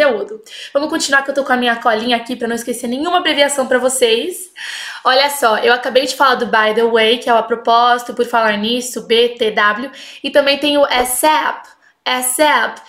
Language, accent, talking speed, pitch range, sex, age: Portuguese, Brazilian, 195 wpm, 240-295 Hz, female, 20-39